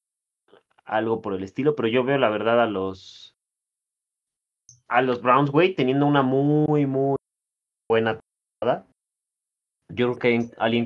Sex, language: male, Spanish